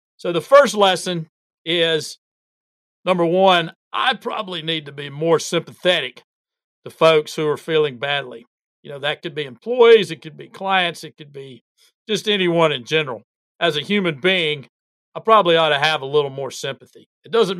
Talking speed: 175 wpm